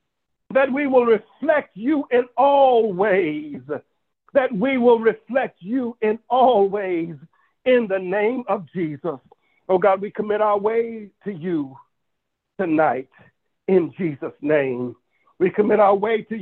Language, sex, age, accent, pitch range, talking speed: English, male, 60-79, American, 205-265 Hz, 140 wpm